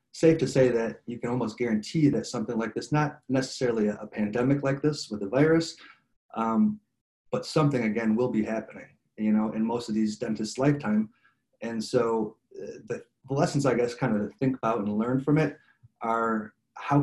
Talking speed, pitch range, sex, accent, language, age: 195 wpm, 110-130 Hz, male, American, English, 30-49